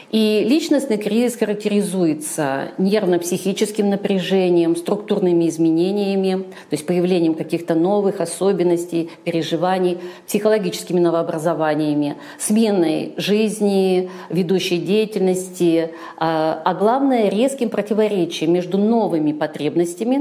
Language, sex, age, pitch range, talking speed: Russian, female, 50-69, 170-220 Hz, 85 wpm